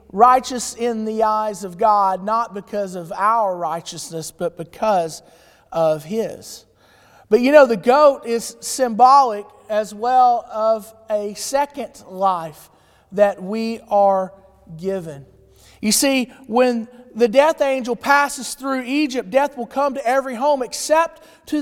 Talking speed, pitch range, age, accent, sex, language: 135 wpm, 200-260 Hz, 40-59, American, male, English